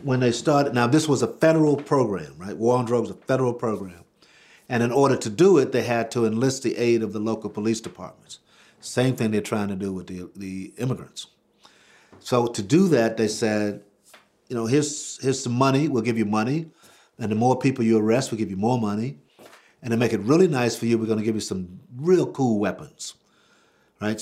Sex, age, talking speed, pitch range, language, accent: male, 50-69, 220 wpm, 105-125 Hz, English, American